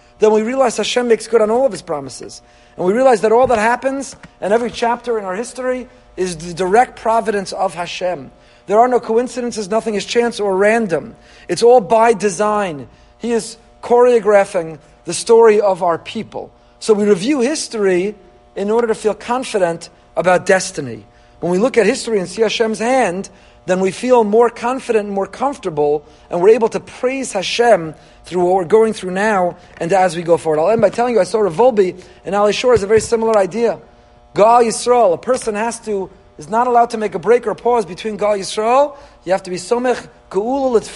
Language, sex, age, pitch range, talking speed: English, male, 50-69, 185-240 Hz, 200 wpm